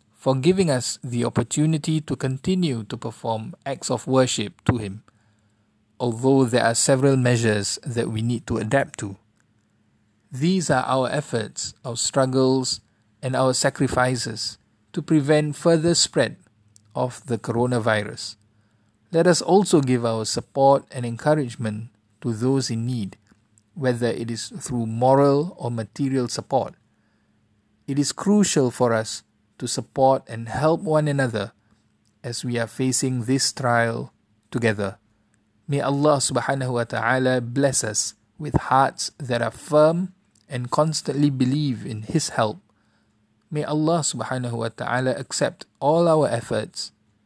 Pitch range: 110-135 Hz